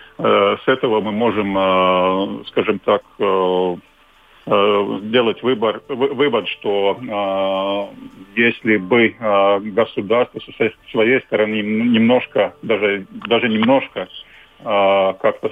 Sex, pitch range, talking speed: male, 95-115 Hz, 85 wpm